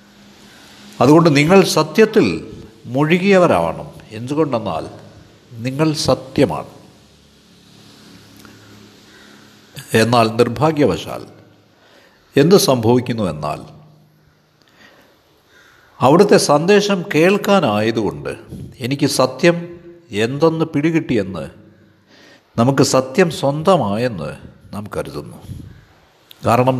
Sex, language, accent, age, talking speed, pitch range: male, Malayalam, native, 60-79, 55 wpm, 115-175 Hz